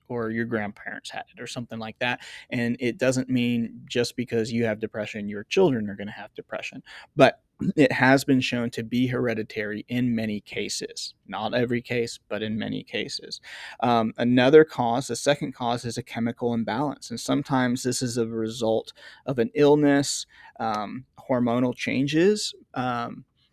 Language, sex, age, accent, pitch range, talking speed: English, male, 30-49, American, 115-135 Hz, 165 wpm